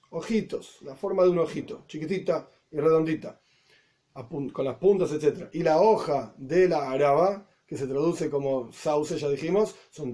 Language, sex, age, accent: Spanish, male, 30-49, Argentinian